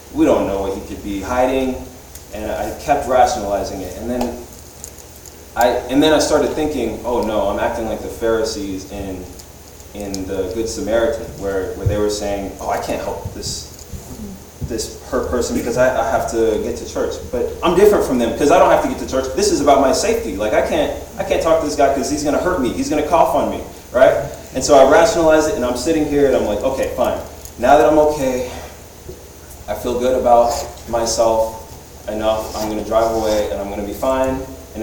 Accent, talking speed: American, 220 wpm